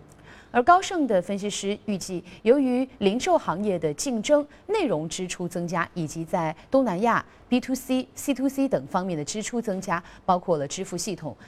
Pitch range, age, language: 175-260 Hz, 30-49, Chinese